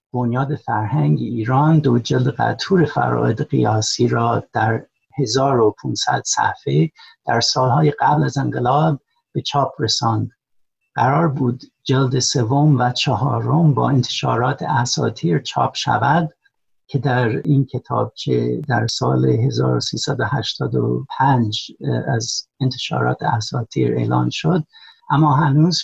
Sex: male